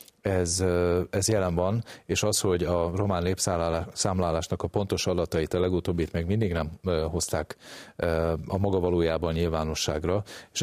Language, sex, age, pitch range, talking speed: Hungarian, male, 40-59, 85-100 Hz, 135 wpm